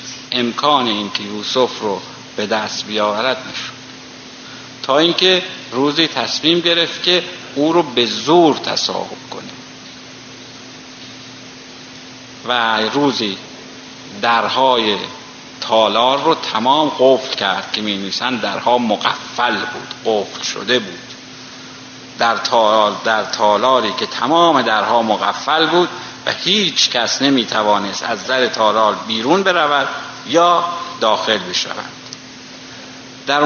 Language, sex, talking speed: Persian, male, 105 wpm